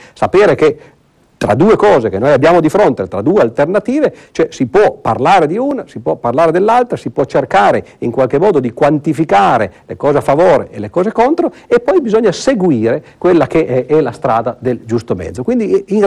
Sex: male